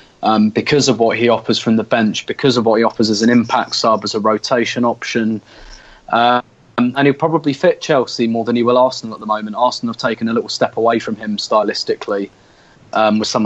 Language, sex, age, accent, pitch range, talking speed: English, male, 20-39, British, 110-125 Hz, 220 wpm